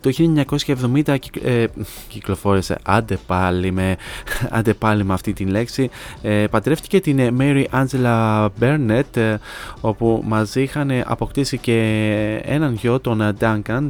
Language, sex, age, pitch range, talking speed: Greek, male, 20-39, 105-125 Hz, 120 wpm